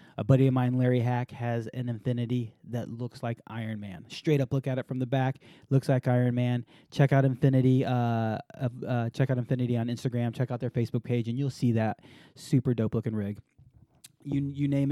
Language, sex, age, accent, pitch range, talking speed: English, male, 20-39, American, 125-145 Hz, 210 wpm